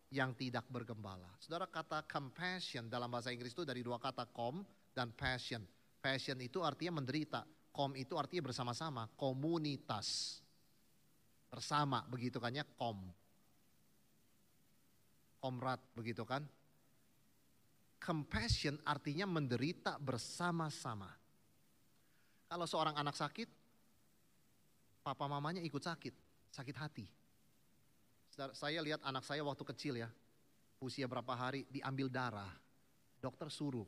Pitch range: 125-160 Hz